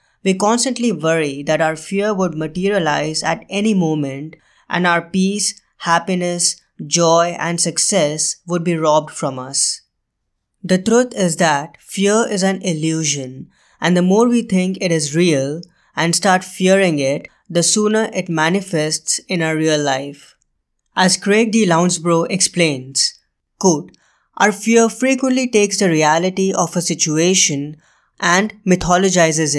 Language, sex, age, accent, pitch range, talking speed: English, female, 20-39, Indian, 160-190 Hz, 140 wpm